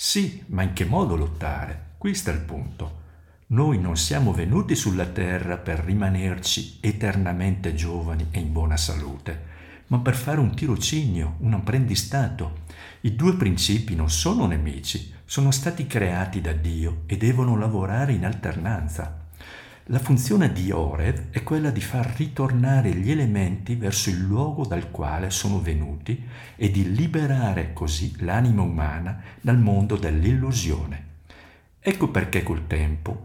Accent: native